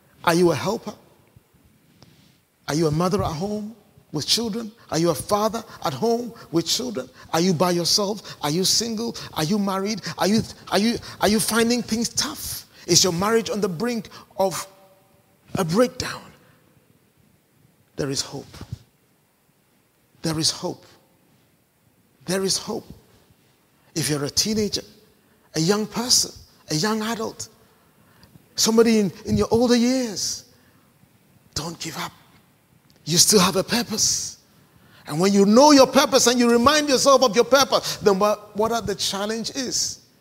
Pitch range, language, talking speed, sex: 155-225 Hz, English, 150 wpm, male